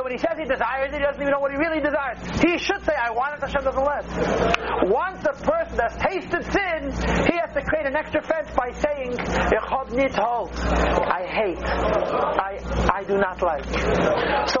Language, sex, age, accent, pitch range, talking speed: English, male, 40-59, American, 210-295 Hz, 190 wpm